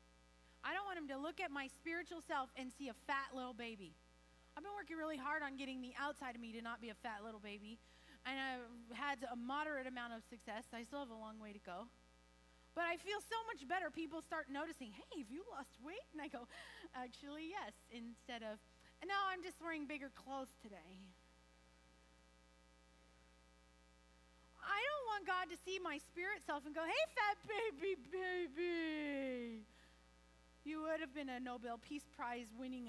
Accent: American